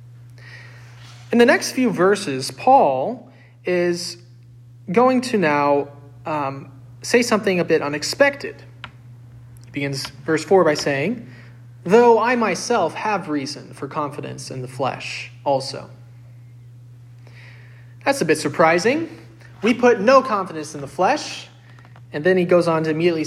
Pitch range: 125-190 Hz